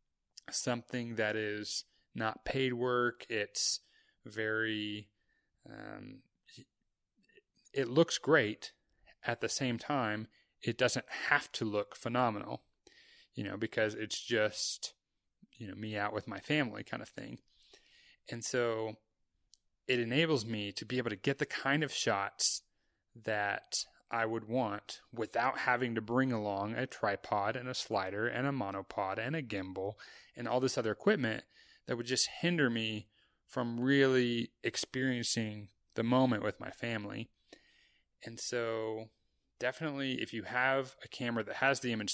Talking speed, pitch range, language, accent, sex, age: 145 wpm, 105-130 Hz, English, American, male, 30-49